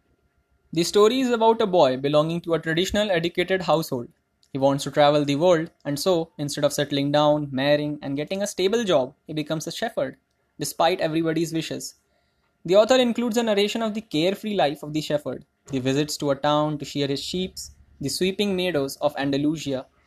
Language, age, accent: English, 10-29, Indian